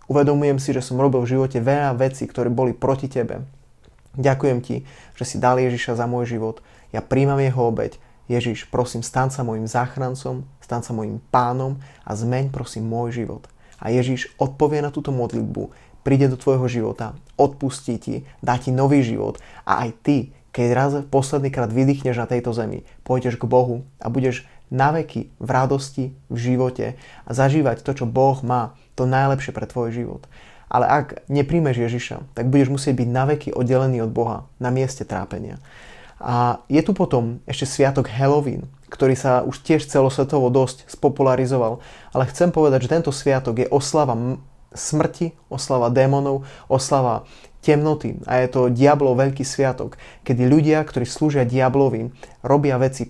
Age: 20-39